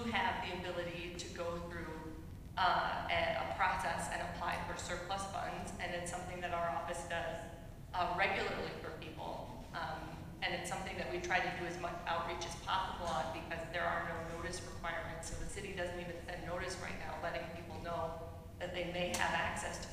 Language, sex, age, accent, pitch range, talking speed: English, female, 30-49, American, 170-180 Hz, 195 wpm